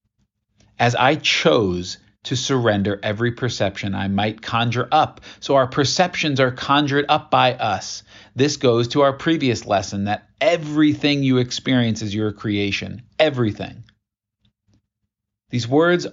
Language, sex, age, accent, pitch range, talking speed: English, male, 40-59, American, 105-145 Hz, 130 wpm